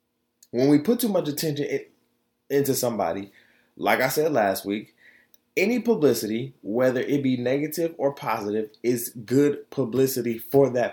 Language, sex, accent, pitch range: English, male, American, 120-195 Hz